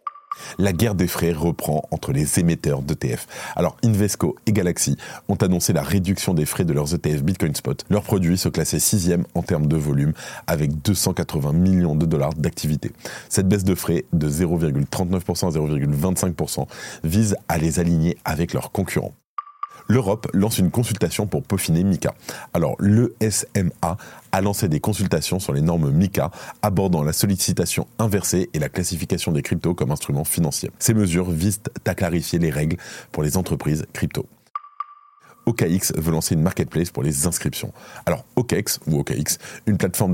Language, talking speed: French, 160 wpm